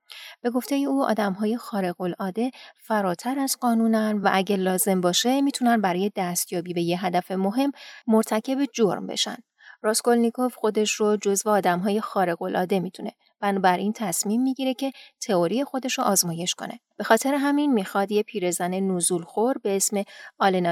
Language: Persian